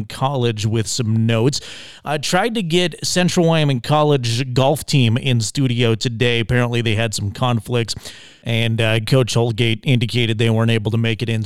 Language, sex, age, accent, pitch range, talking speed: English, male, 30-49, American, 115-140 Hz, 175 wpm